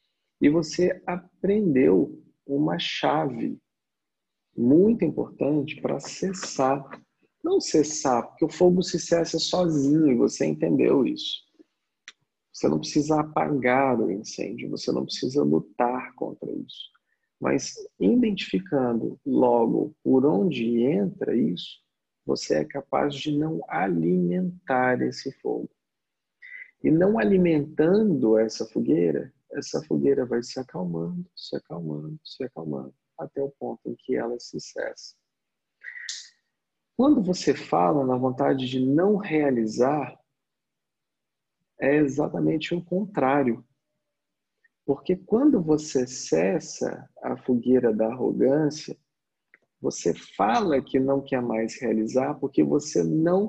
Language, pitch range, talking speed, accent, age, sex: Portuguese, 125-180 Hz, 110 wpm, Brazilian, 40-59, male